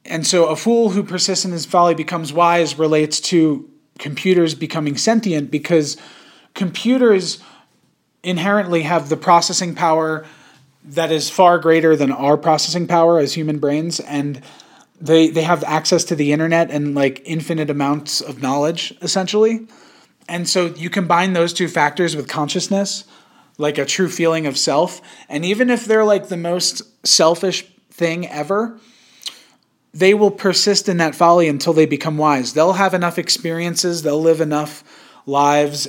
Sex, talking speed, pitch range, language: male, 155 wpm, 150-185 Hz, English